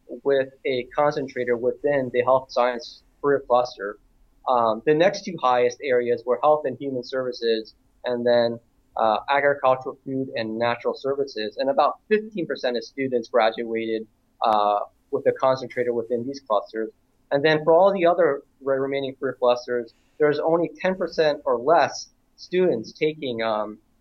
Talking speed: 145 wpm